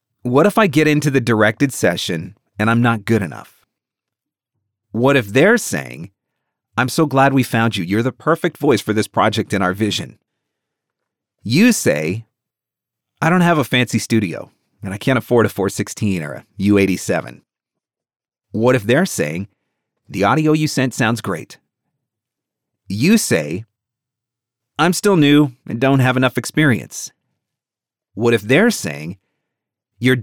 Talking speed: 150 wpm